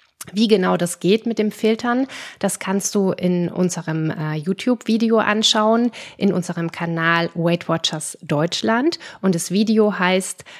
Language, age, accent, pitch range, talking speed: German, 30-49, German, 175-215 Hz, 135 wpm